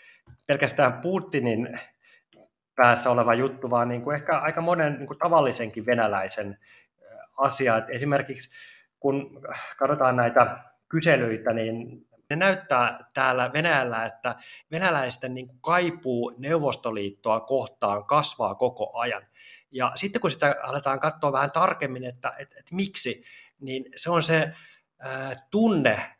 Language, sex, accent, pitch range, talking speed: Finnish, male, native, 115-150 Hz, 105 wpm